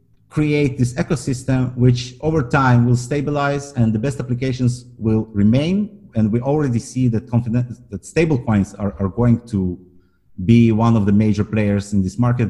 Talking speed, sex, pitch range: 175 wpm, male, 105-130 Hz